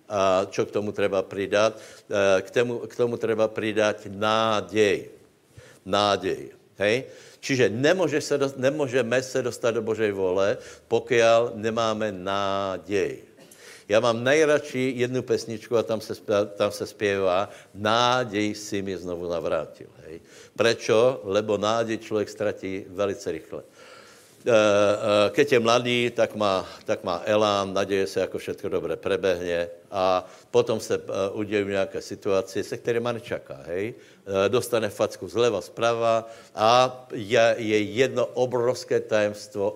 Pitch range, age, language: 100-125 Hz, 60-79, Slovak